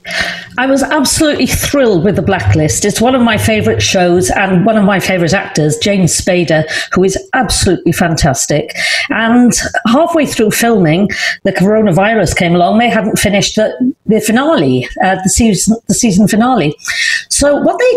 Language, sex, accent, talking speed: English, female, British, 155 wpm